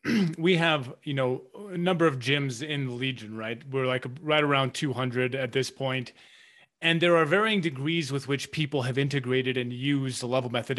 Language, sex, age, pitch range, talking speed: English, male, 30-49, 135-165 Hz, 195 wpm